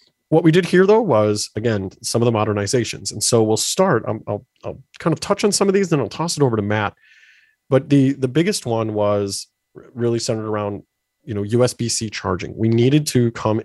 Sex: male